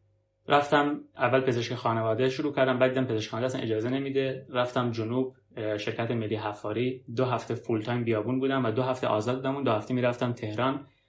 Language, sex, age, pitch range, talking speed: Persian, male, 30-49, 110-130 Hz, 160 wpm